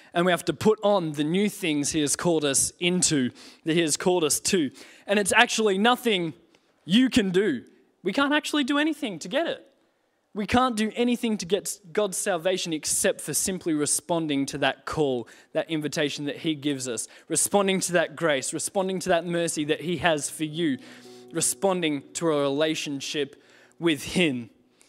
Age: 20-39